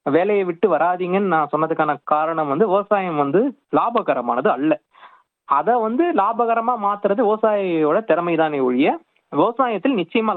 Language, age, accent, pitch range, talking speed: Tamil, 20-39, native, 145-210 Hz, 115 wpm